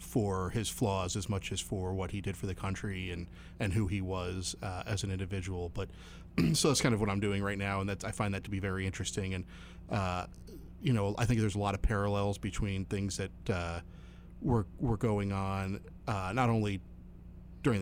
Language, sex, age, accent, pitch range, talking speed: English, male, 30-49, American, 90-110 Hz, 215 wpm